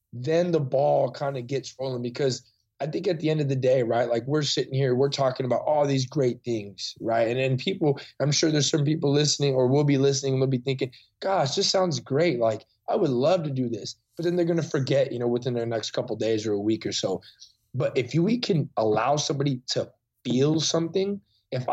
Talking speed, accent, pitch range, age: 240 wpm, American, 125-160 Hz, 20-39